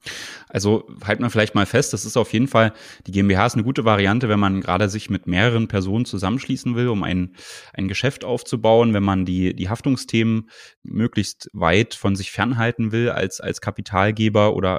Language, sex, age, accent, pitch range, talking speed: German, male, 30-49, German, 95-115 Hz, 185 wpm